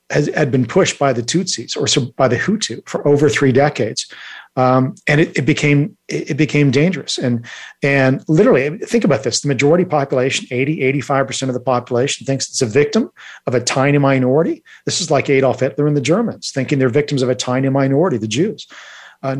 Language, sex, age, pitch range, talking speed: English, male, 40-59, 125-150 Hz, 190 wpm